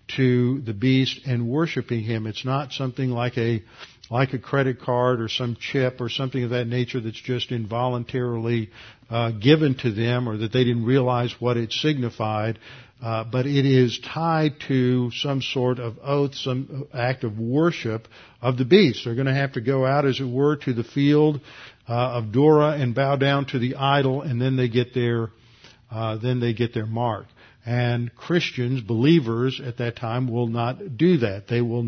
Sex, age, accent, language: male, 50-69, American, English